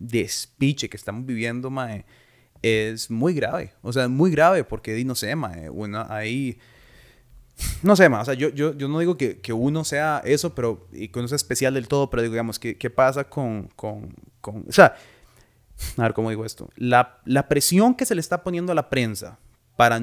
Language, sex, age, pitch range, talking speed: Spanish, male, 30-49, 115-140 Hz, 210 wpm